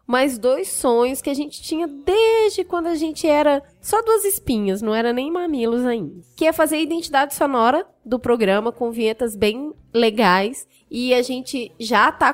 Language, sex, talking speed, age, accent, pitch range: Portuguese, female, 180 wpm, 20-39, Brazilian, 240-315 Hz